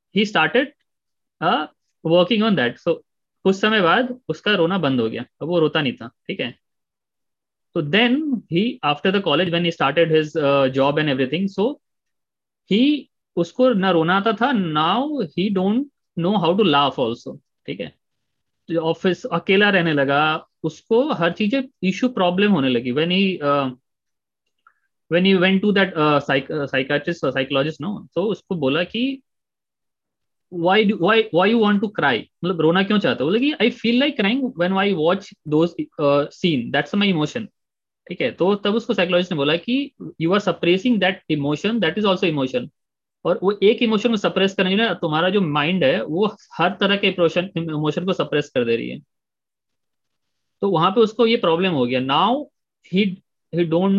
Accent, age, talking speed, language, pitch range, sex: native, 20-39, 120 wpm, Hindi, 160-210 Hz, male